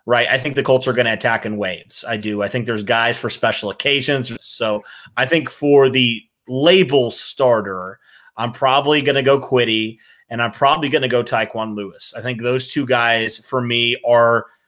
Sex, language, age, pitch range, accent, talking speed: male, English, 30-49, 110-130 Hz, American, 200 wpm